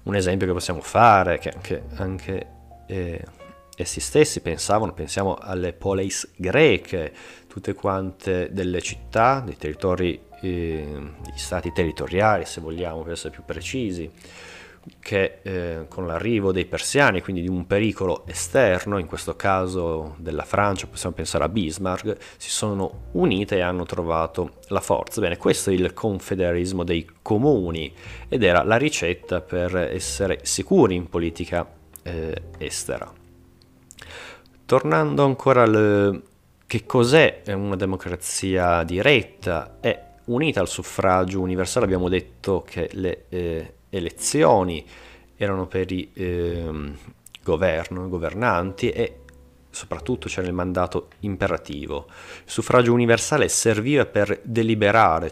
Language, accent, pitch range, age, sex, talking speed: Italian, native, 85-100 Hz, 30-49, male, 125 wpm